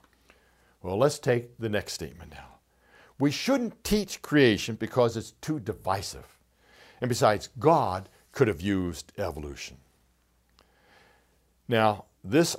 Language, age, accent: English, 60-79, American